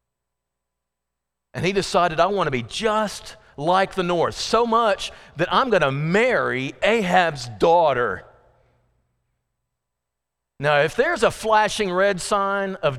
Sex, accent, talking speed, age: male, American, 130 wpm, 40-59